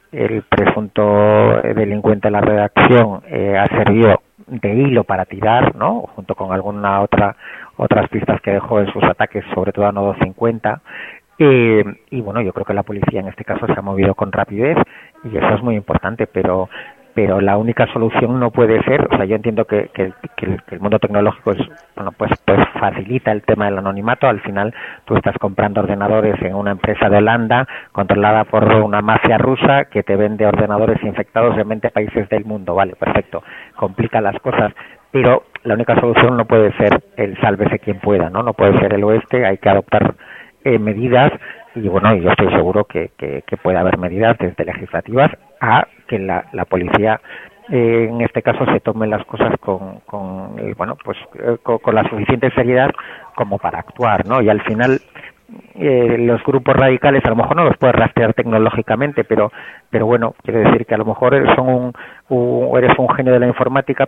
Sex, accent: male, Spanish